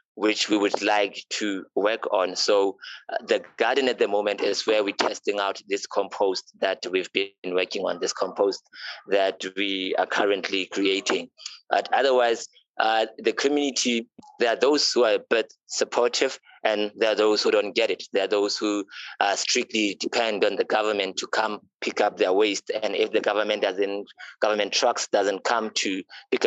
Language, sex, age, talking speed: English, male, 20-39, 180 wpm